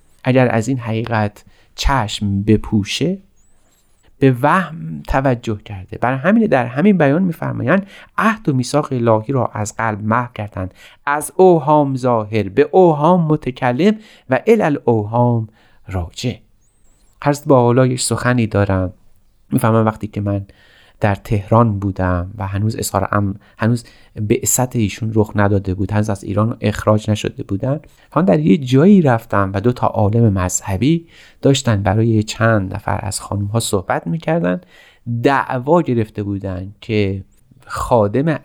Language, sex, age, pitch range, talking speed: Persian, male, 30-49, 105-140 Hz, 135 wpm